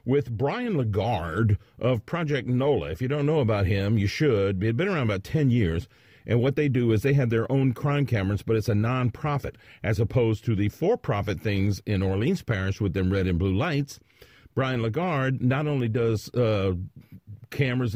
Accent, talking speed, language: American, 195 wpm, English